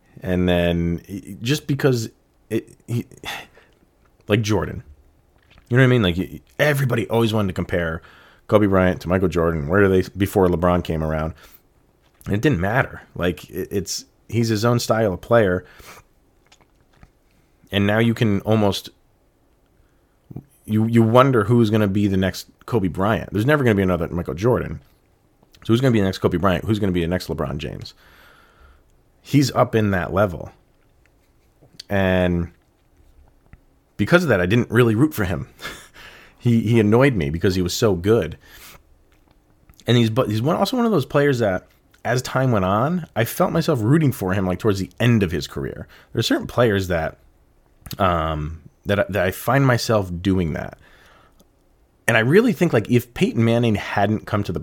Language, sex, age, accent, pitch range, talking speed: English, male, 30-49, American, 90-115 Hz, 175 wpm